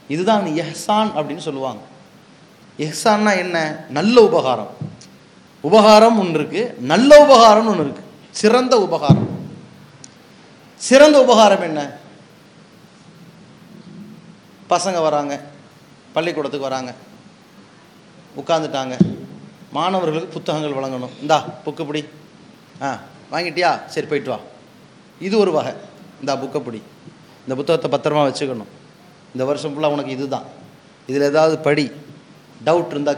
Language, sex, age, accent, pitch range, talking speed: English, male, 30-49, Indian, 150-195 Hz, 65 wpm